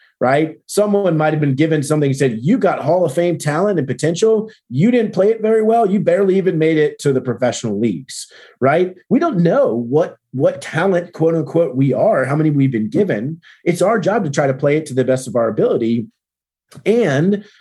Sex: male